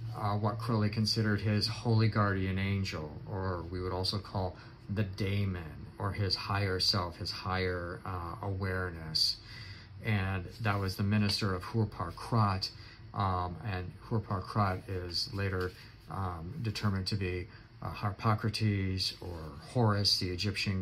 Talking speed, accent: 130 wpm, American